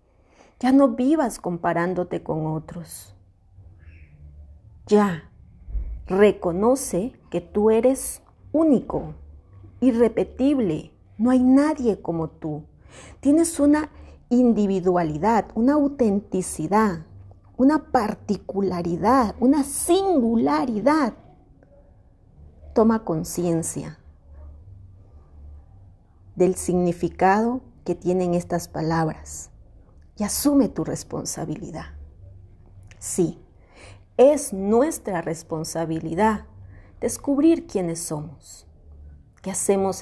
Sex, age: female, 40-59